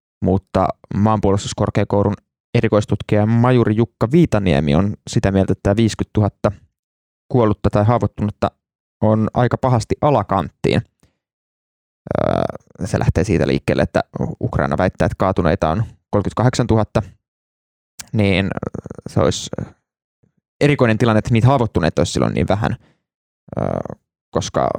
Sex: male